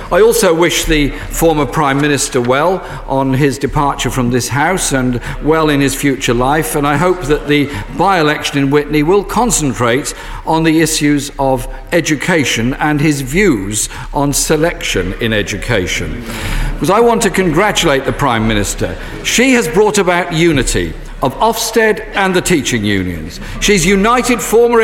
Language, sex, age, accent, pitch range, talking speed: English, male, 50-69, British, 145-220 Hz, 155 wpm